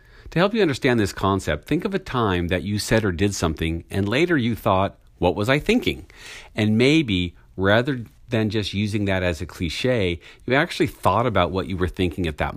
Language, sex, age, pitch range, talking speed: English, male, 50-69, 90-120 Hz, 210 wpm